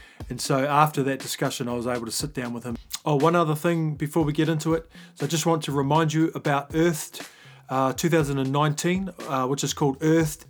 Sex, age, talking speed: male, 30-49, 215 wpm